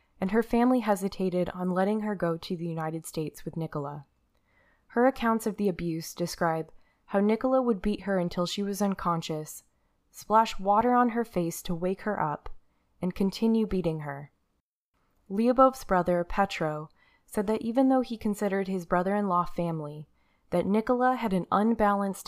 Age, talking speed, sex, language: 20-39, 160 wpm, female, English